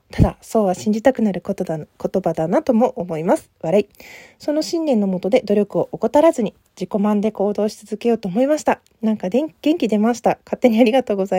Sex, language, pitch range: female, Japanese, 200-260 Hz